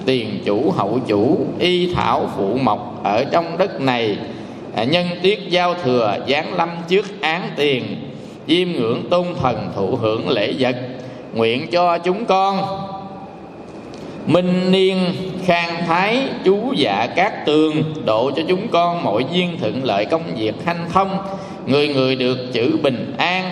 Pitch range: 130-185 Hz